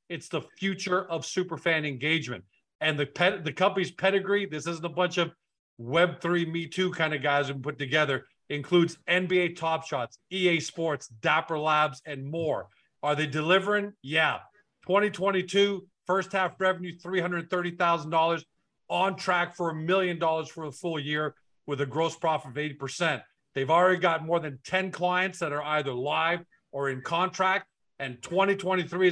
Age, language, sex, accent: 40-59, English, male, American